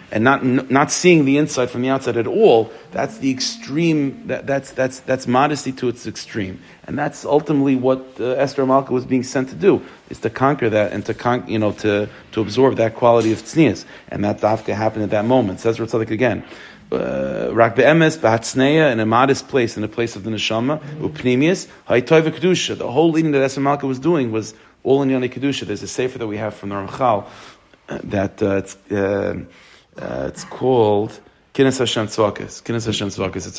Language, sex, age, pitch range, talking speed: English, male, 40-59, 105-135 Hz, 195 wpm